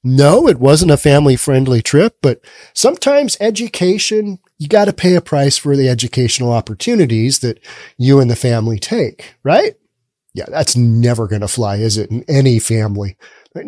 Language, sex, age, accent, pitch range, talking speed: English, male, 40-59, American, 125-195 Hz, 165 wpm